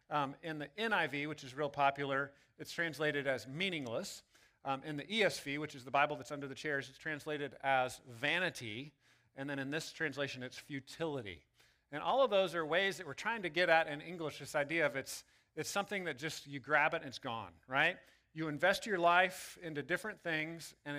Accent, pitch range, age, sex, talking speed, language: American, 135-170 Hz, 40-59, male, 205 wpm, English